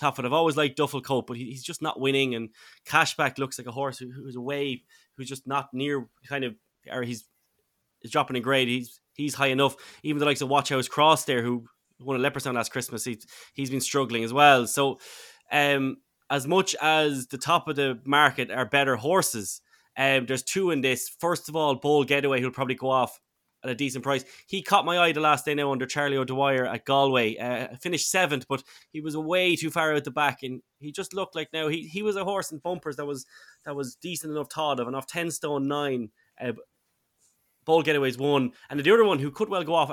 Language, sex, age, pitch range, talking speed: English, male, 20-39, 130-150 Hz, 235 wpm